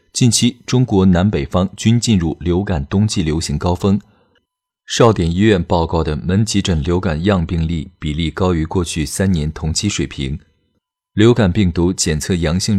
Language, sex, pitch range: Chinese, male, 80-105 Hz